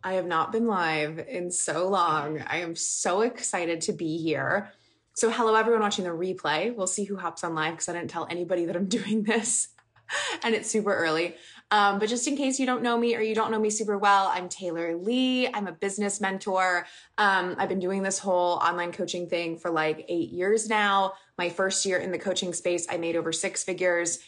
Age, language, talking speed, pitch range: 20-39, English, 220 wpm, 170-210 Hz